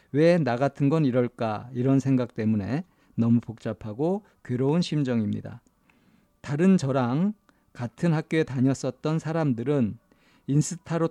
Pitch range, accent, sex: 120-155 Hz, native, male